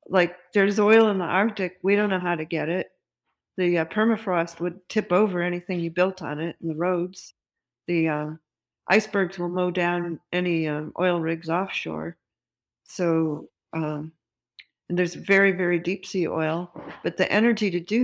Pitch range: 165-195 Hz